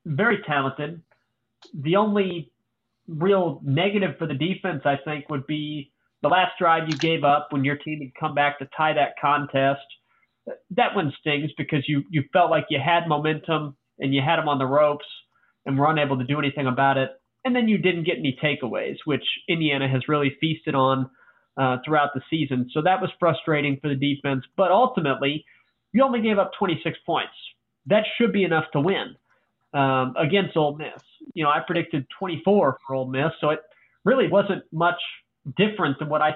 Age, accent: 30-49, American